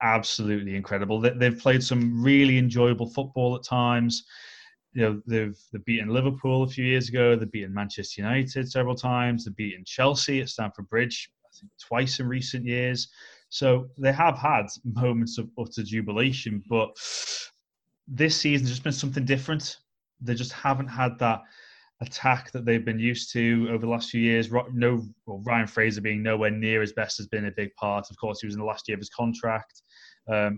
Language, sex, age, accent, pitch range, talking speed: English, male, 20-39, British, 110-125 Hz, 190 wpm